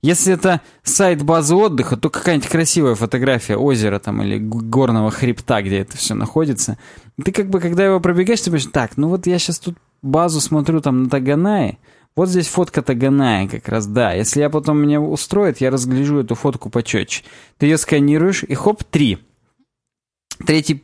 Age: 20-39